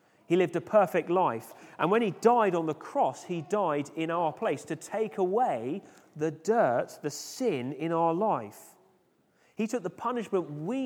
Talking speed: 175 wpm